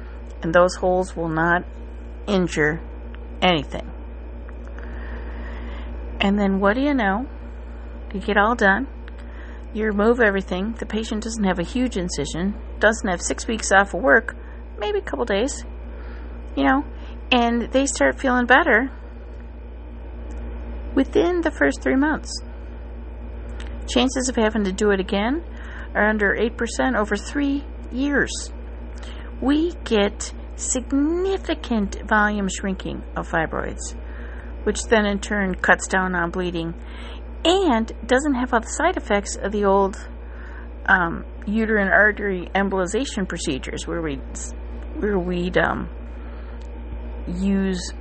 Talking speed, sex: 125 wpm, female